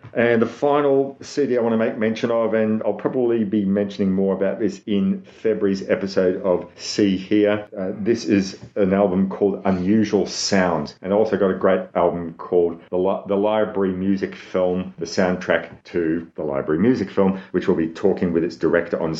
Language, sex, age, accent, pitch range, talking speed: English, male, 40-59, Australian, 85-100 Hz, 185 wpm